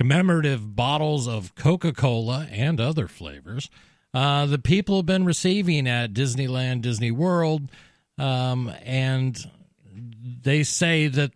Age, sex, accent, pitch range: 40-59, male, American, 110-145 Hz